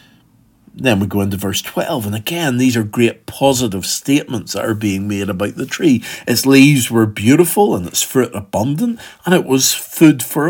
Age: 50-69